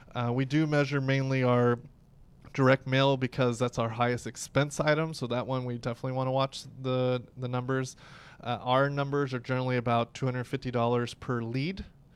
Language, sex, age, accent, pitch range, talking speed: English, male, 20-39, American, 125-160 Hz, 170 wpm